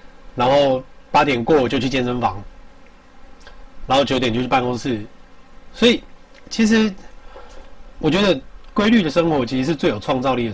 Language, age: Chinese, 30-49